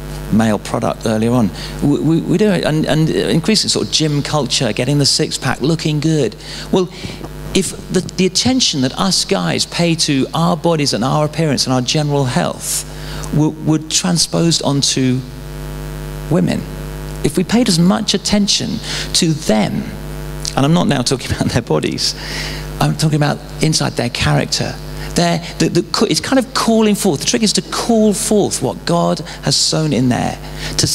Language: English